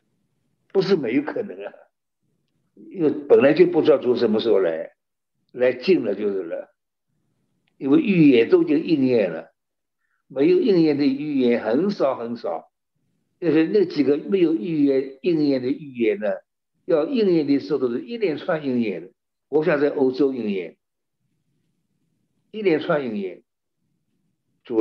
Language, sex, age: Chinese, male, 60-79